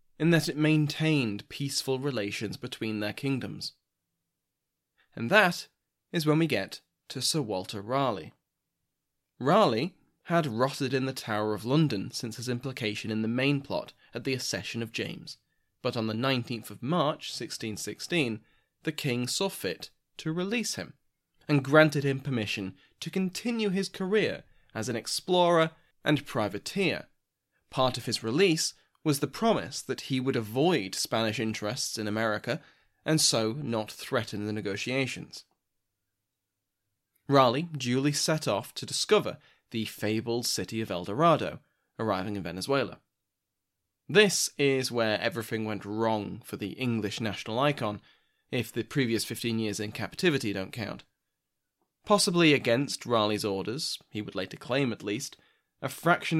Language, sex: English, male